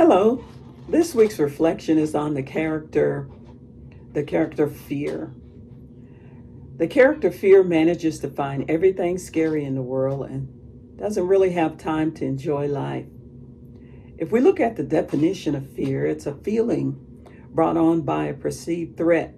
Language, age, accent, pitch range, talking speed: English, 50-69, American, 125-165 Hz, 145 wpm